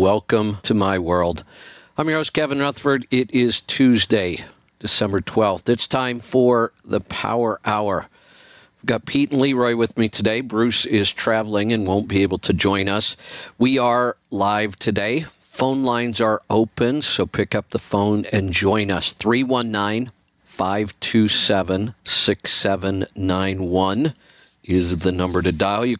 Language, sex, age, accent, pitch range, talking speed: English, male, 50-69, American, 95-115 Hz, 140 wpm